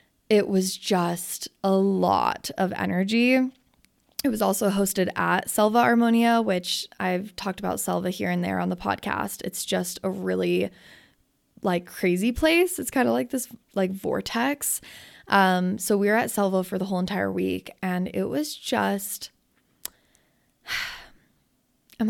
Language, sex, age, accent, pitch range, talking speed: English, female, 20-39, American, 180-230 Hz, 150 wpm